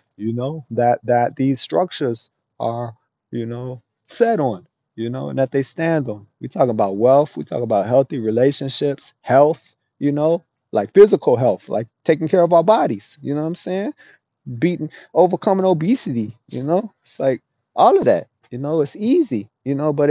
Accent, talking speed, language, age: American, 180 wpm, English, 30-49